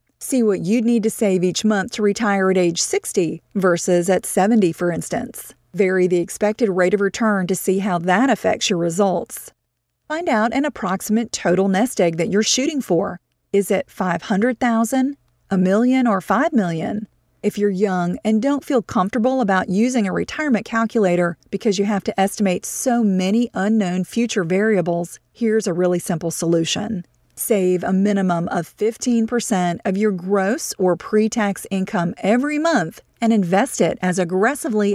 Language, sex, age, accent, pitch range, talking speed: English, female, 40-59, American, 185-230 Hz, 165 wpm